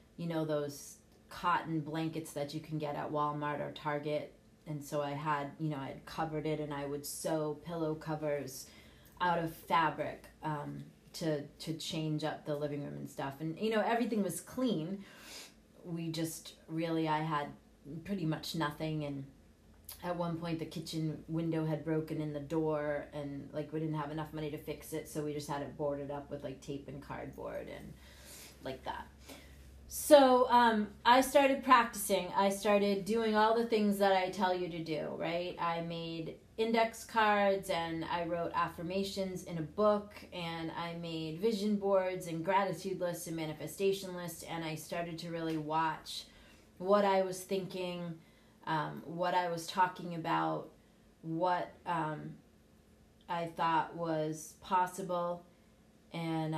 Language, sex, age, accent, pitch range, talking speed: English, female, 30-49, American, 150-180 Hz, 165 wpm